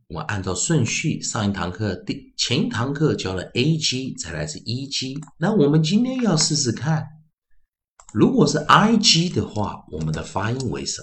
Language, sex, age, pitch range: Chinese, male, 50-69, 95-155 Hz